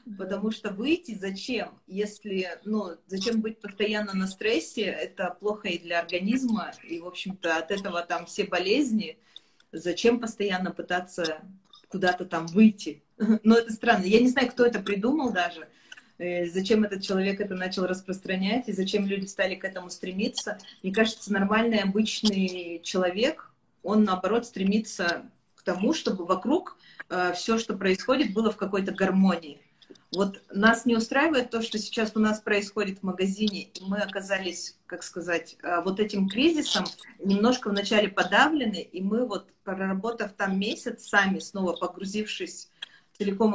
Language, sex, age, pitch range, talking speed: Russian, female, 20-39, 185-225 Hz, 145 wpm